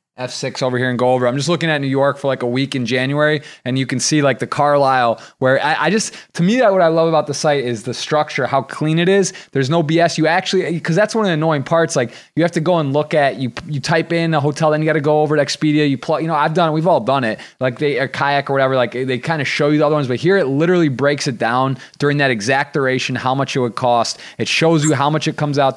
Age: 20-39